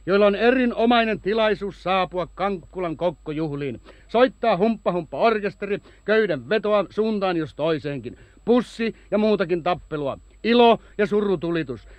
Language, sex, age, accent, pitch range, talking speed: Finnish, male, 60-79, native, 160-215 Hz, 105 wpm